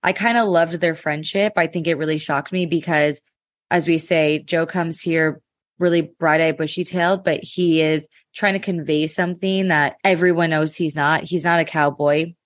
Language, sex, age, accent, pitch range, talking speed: English, female, 20-39, American, 150-180 Hz, 195 wpm